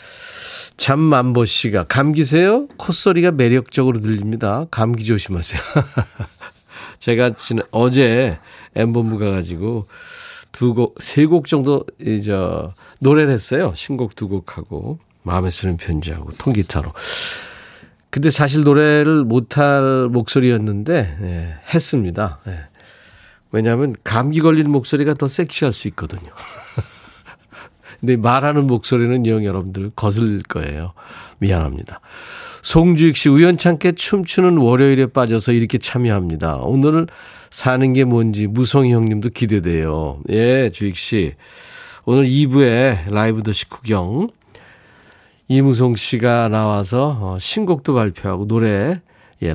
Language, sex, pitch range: Korean, male, 100-145 Hz